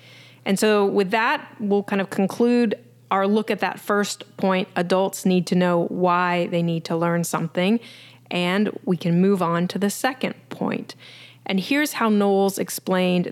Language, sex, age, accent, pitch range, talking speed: English, female, 30-49, American, 180-215 Hz, 170 wpm